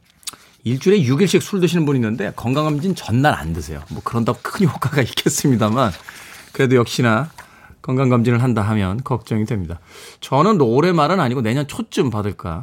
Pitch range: 100-155 Hz